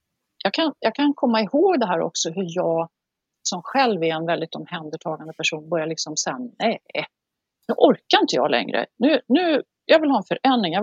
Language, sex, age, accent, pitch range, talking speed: Swedish, female, 40-59, native, 170-245 Hz, 185 wpm